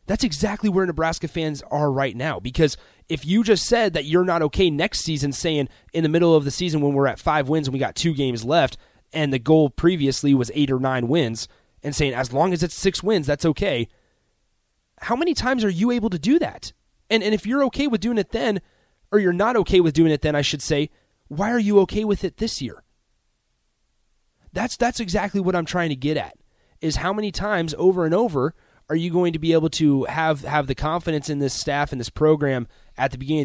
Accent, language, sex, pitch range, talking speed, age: American, English, male, 125-170 Hz, 230 wpm, 30-49